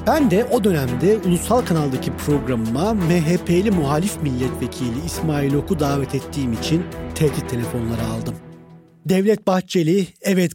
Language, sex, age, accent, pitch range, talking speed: Turkish, male, 40-59, native, 125-180 Hz, 120 wpm